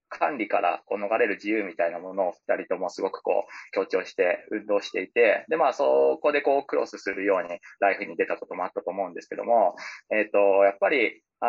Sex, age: male, 20-39